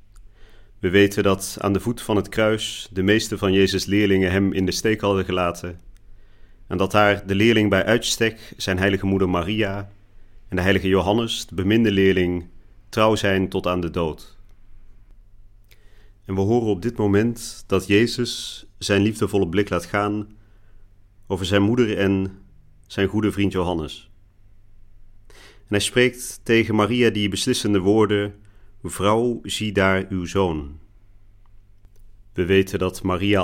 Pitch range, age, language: 95-105 Hz, 40-59, Dutch